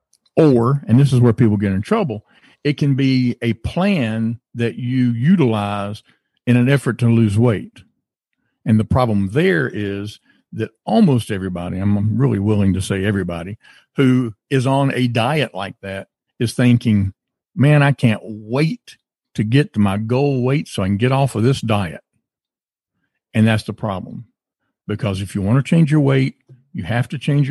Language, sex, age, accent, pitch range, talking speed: English, male, 50-69, American, 105-130 Hz, 175 wpm